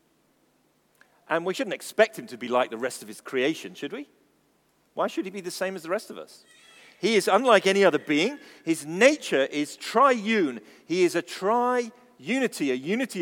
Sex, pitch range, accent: male, 135-220 Hz, British